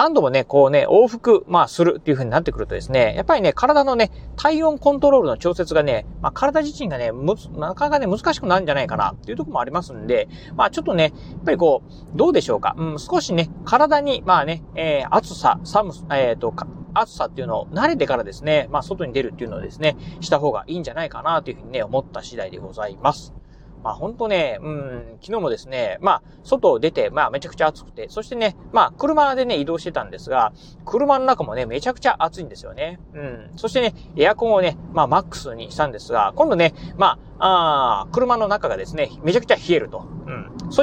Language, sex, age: Japanese, male, 30-49